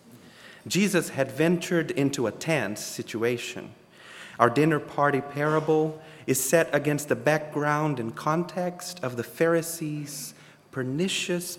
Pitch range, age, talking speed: 125-165 Hz, 40-59, 115 wpm